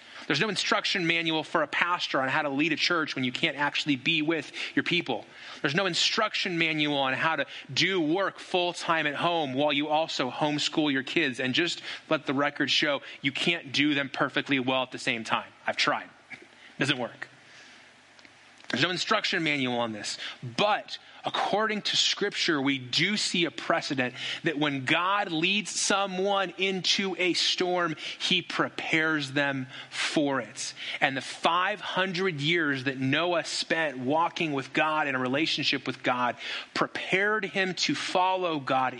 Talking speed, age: 165 wpm, 30-49